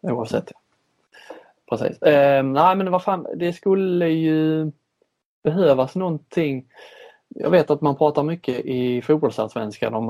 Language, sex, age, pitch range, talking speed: Swedish, male, 20-39, 115-145 Hz, 130 wpm